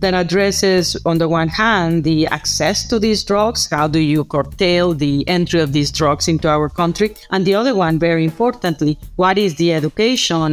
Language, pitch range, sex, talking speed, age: English, 155-185 Hz, female, 190 wpm, 40-59